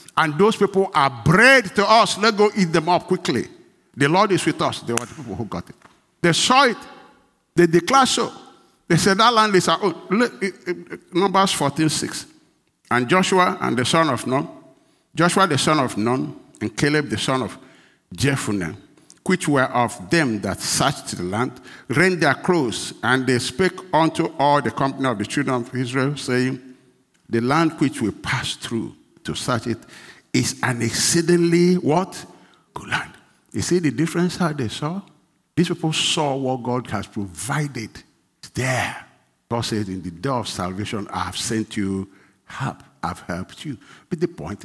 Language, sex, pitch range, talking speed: English, male, 120-175 Hz, 175 wpm